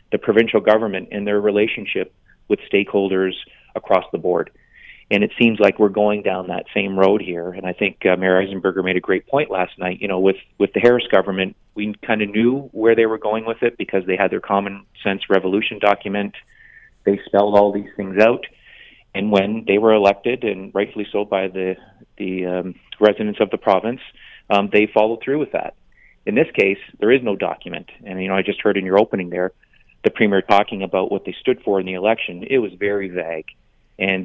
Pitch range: 95-105 Hz